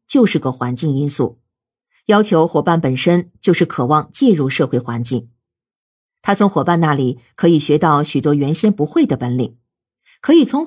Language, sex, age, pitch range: Chinese, female, 50-69, 135-200 Hz